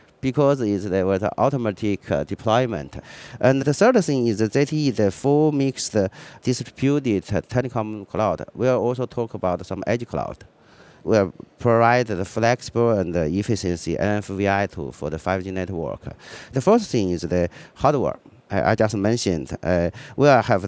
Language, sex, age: English, male, 40-59